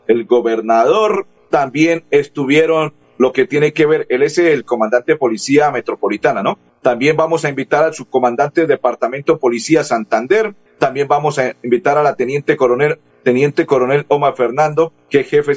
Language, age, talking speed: Spanish, 40-59, 160 wpm